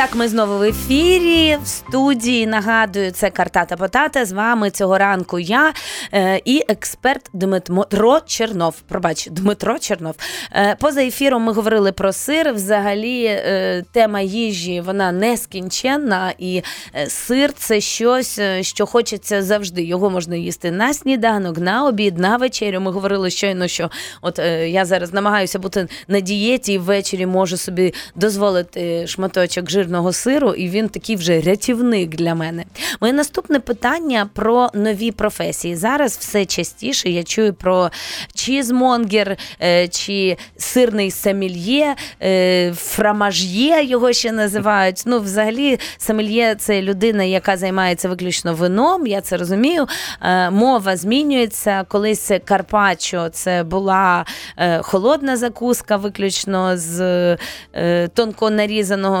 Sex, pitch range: female, 185-230 Hz